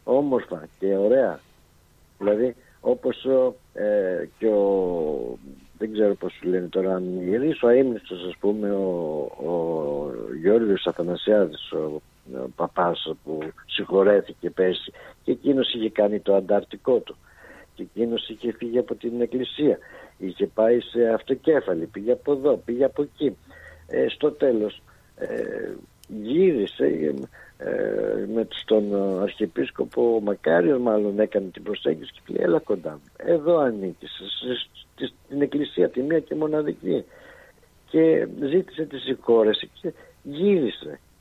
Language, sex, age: Greek, male, 60-79